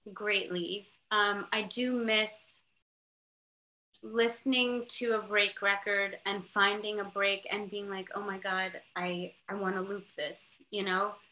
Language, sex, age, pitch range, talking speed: English, female, 20-39, 195-225 Hz, 150 wpm